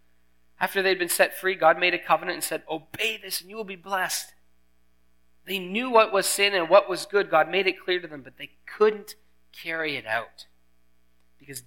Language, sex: English, male